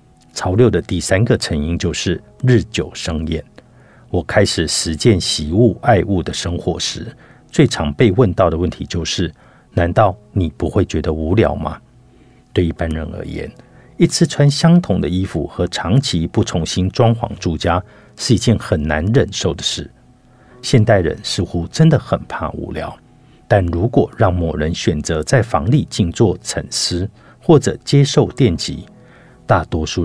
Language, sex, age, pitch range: Chinese, male, 50-69, 85-115 Hz